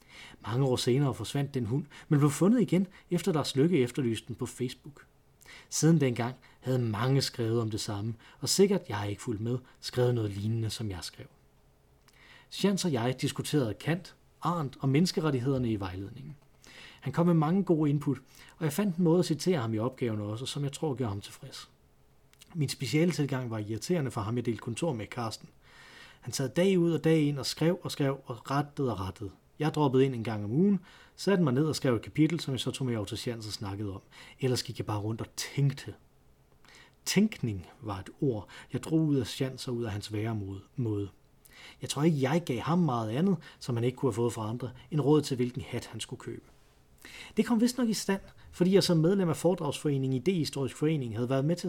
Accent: native